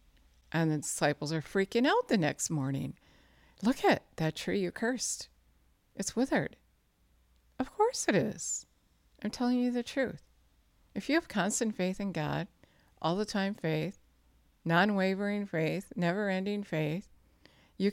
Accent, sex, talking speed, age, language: American, female, 145 wpm, 60-79, English